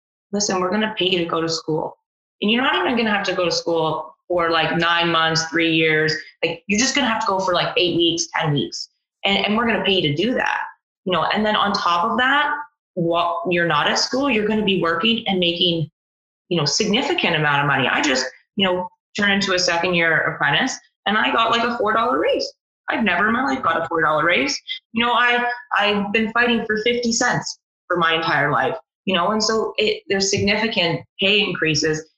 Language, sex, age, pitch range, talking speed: English, female, 20-39, 170-235 Hz, 235 wpm